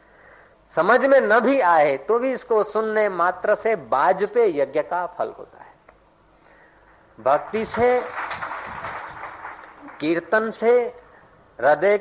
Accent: native